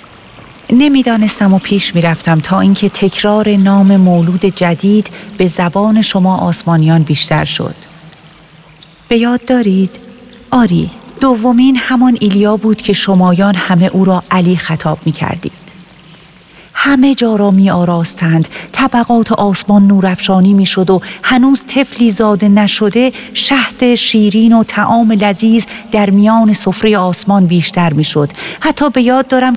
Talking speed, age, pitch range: 125 wpm, 40-59, 185-225 Hz